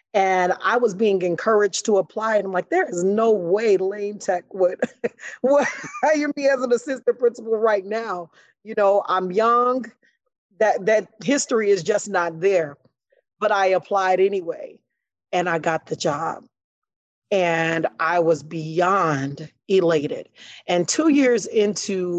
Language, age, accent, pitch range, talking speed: English, 40-59, American, 175-215 Hz, 150 wpm